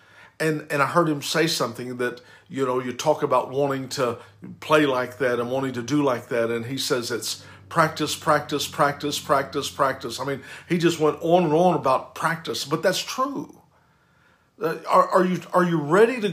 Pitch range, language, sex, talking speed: 145-180 Hz, English, male, 195 wpm